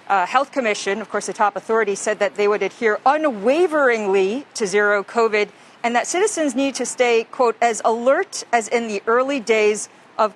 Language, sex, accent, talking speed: English, female, American, 185 wpm